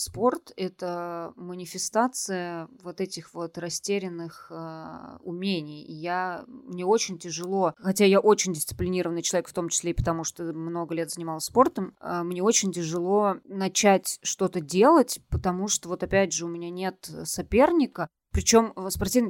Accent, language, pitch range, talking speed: native, Russian, 175-205 Hz, 145 wpm